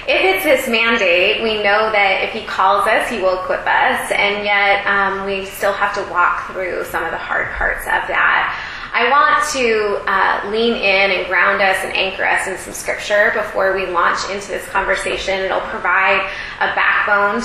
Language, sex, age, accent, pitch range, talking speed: English, female, 20-39, American, 195-235 Hz, 195 wpm